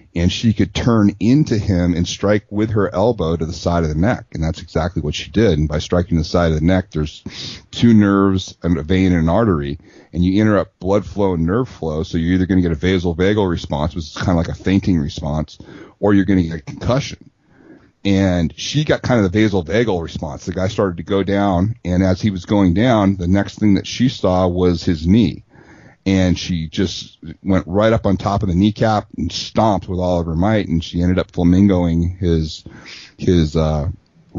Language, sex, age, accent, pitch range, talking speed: English, male, 40-59, American, 85-100 Hz, 220 wpm